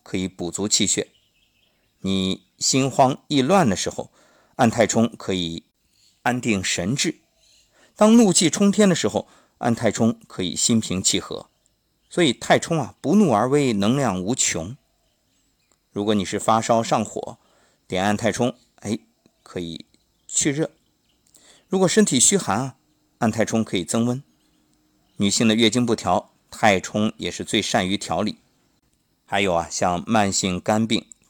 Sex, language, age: male, Chinese, 50-69